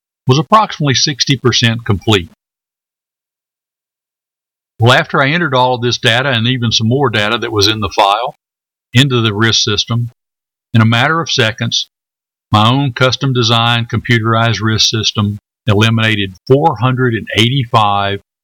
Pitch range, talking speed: 110-125 Hz, 125 wpm